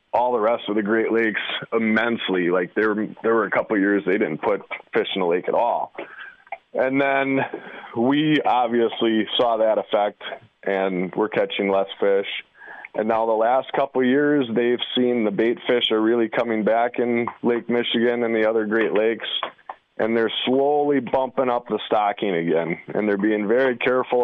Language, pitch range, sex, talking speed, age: English, 105-125 Hz, male, 185 wpm, 20-39